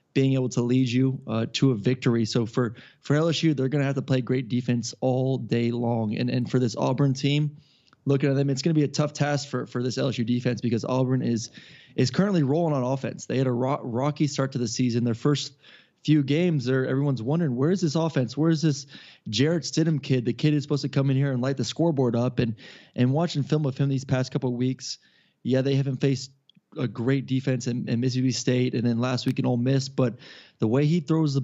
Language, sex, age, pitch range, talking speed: English, male, 20-39, 125-145 Hz, 240 wpm